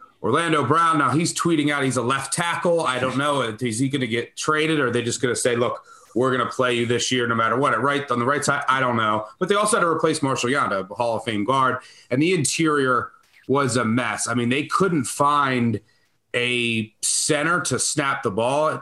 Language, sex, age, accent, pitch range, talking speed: English, male, 30-49, American, 120-155 Hz, 245 wpm